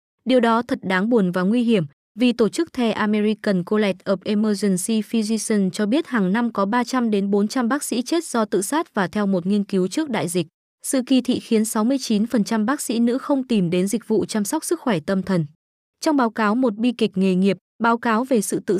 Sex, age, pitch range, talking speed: female, 20-39, 195-245 Hz, 220 wpm